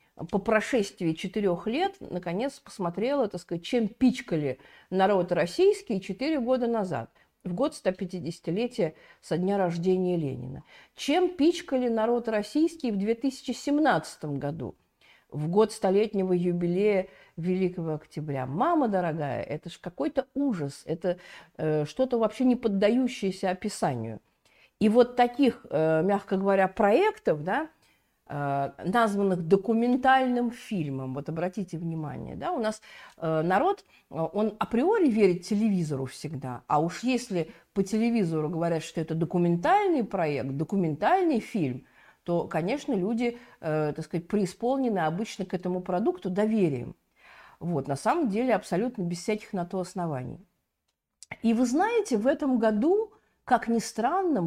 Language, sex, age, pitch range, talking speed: Russian, female, 50-69, 170-240 Hz, 125 wpm